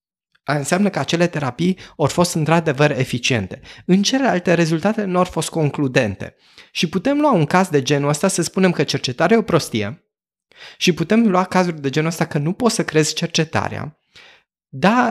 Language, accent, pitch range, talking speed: Romanian, native, 140-195 Hz, 175 wpm